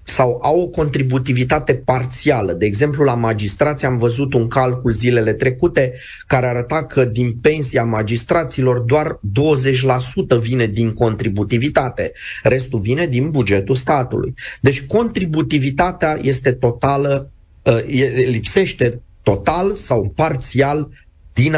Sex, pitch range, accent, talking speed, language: male, 120-155 Hz, native, 110 wpm, Romanian